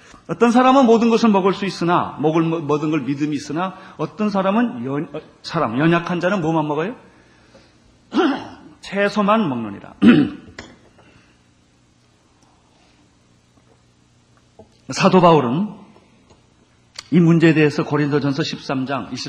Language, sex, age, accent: Korean, male, 40-59, native